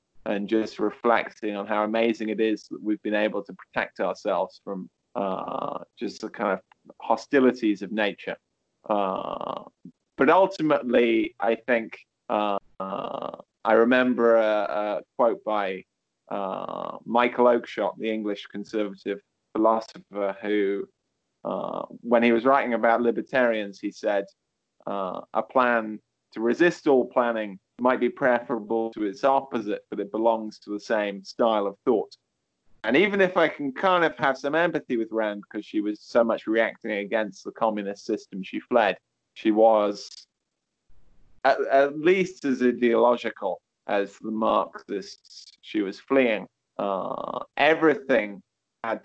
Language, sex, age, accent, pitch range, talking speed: English, male, 20-39, British, 105-125 Hz, 140 wpm